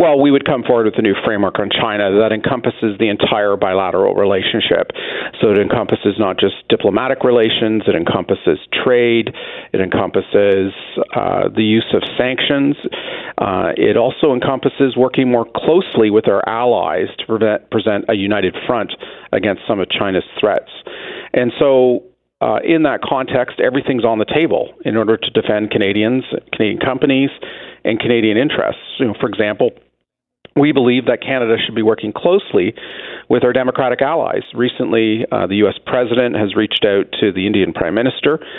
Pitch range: 110-130 Hz